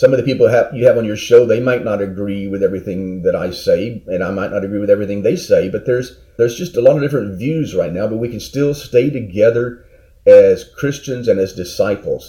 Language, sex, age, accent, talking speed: English, male, 40-59, American, 240 wpm